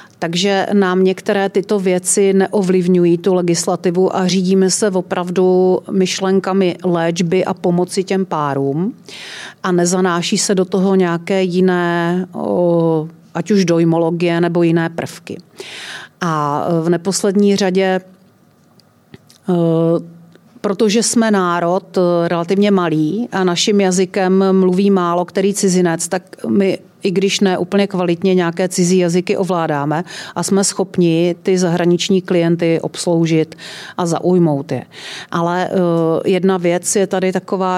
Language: Czech